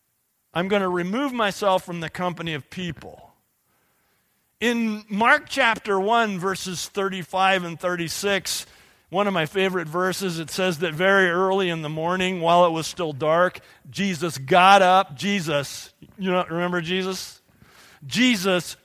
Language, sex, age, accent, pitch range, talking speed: English, male, 40-59, American, 175-215 Hz, 140 wpm